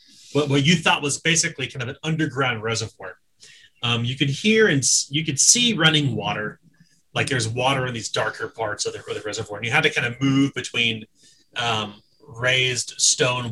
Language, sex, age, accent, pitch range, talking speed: English, male, 30-49, American, 125-160 Hz, 185 wpm